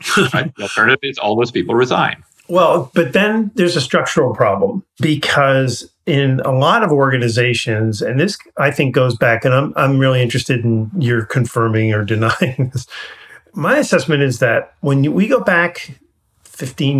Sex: male